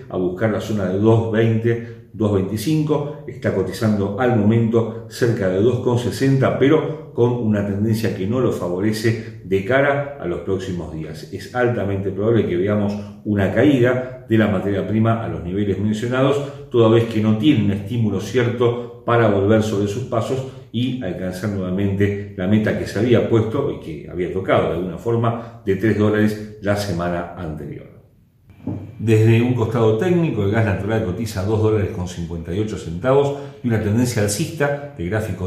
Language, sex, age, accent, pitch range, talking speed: Spanish, male, 40-59, Argentinian, 100-120 Hz, 165 wpm